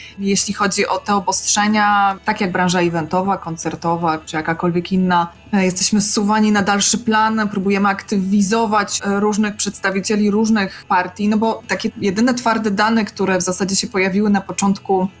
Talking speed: 145 wpm